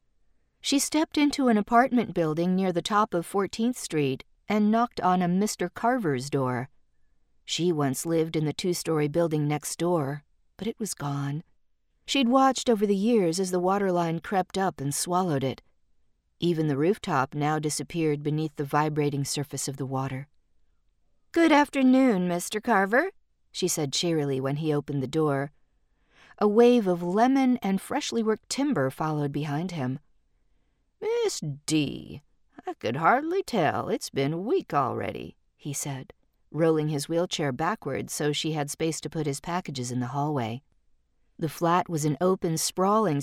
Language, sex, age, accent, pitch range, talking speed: English, female, 40-59, American, 145-210 Hz, 160 wpm